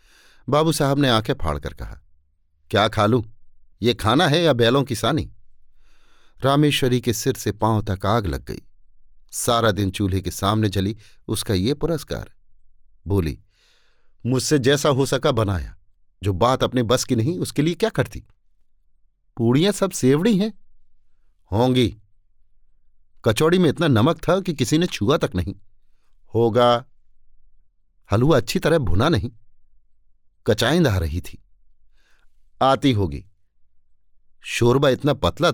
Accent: native